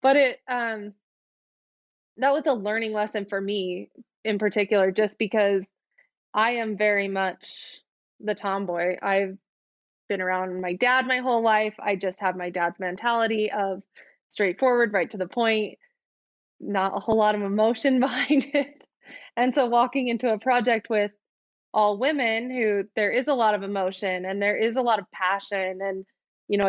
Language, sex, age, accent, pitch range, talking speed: English, female, 20-39, American, 195-230 Hz, 165 wpm